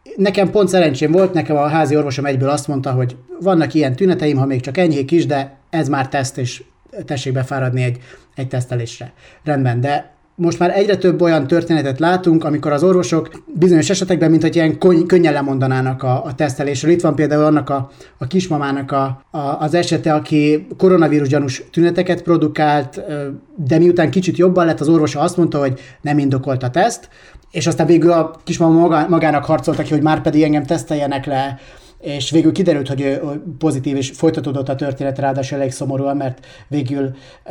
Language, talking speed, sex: Hungarian, 175 wpm, male